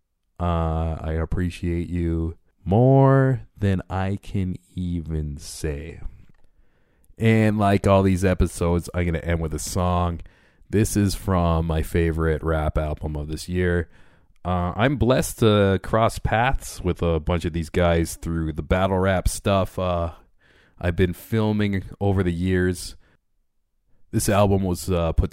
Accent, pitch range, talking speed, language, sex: American, 85-100 Hz, 145 wpm, English, male